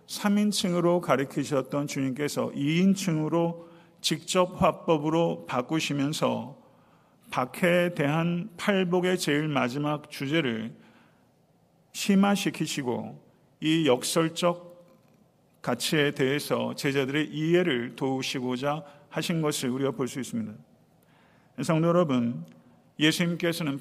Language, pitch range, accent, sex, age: Korean, 135-170 Hz, native, male, 50-69